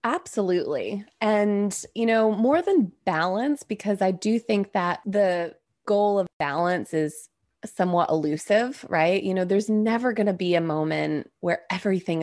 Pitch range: 165-225 Hz